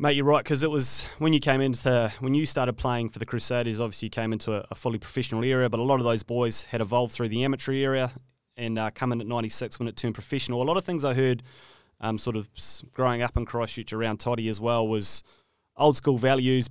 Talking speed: 250 wpm